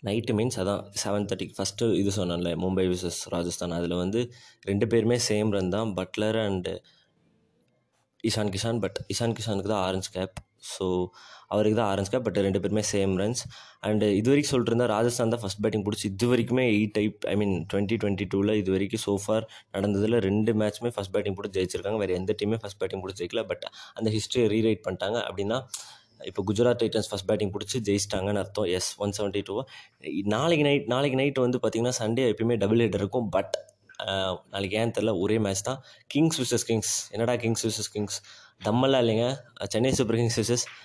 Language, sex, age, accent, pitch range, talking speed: Tamil, male, 20-39, native, 100-115 Hz, 170 wpm